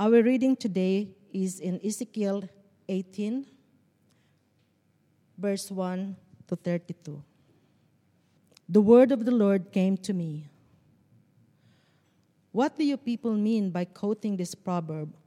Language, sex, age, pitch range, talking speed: English, female, 40-59, 170-210 Hz, 110 wpm